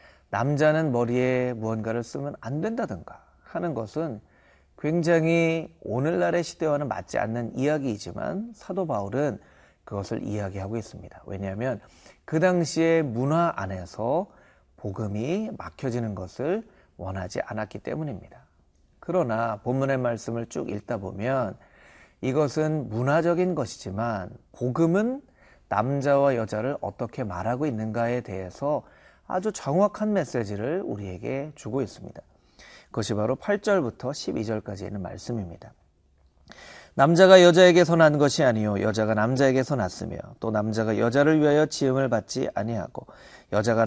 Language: Korean